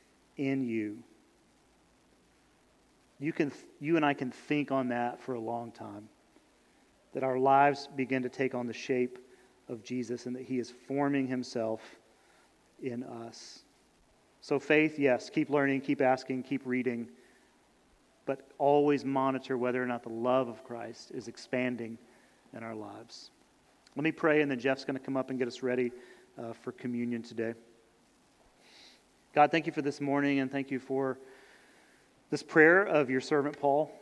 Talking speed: 165 wpm